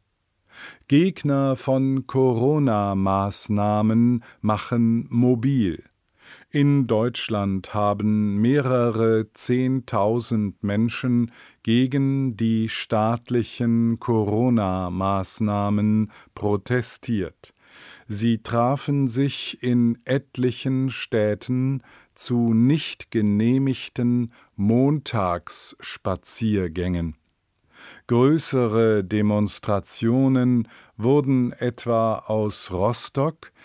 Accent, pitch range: German, 105-130 Hz